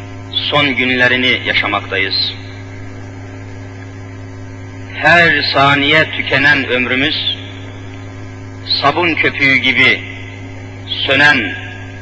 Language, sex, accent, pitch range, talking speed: Turkish, male, native, 95-130 Hz, 55 wpm